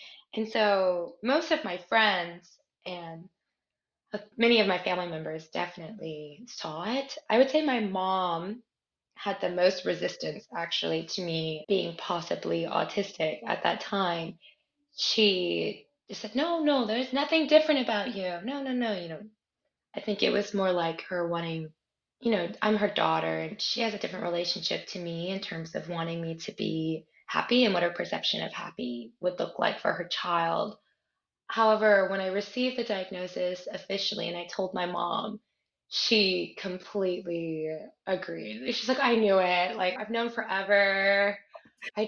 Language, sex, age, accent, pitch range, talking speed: English, female, 20-39, American, 175-225 Hz, 165 wpm